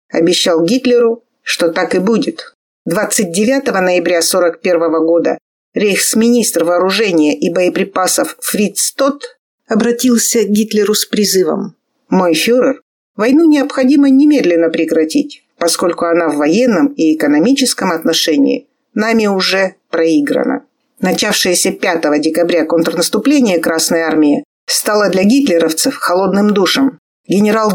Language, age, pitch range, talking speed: Russian, 50-69, 180-250 Hz, 105 wpm